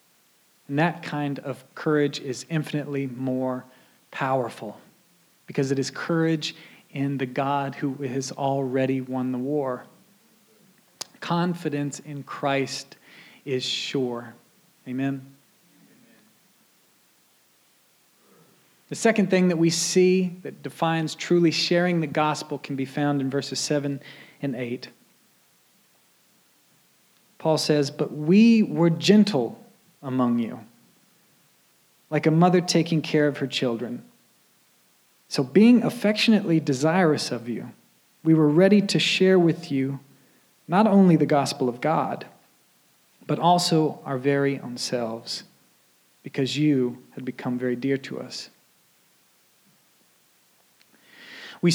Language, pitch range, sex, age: English, 135-170 Hz, male, 40-59